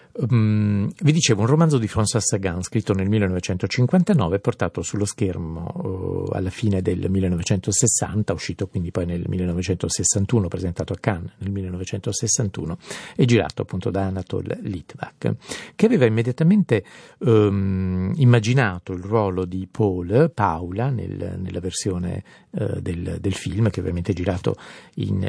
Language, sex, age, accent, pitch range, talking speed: Italian, male, 50-69, native, 95-115 Hz, 135 wpm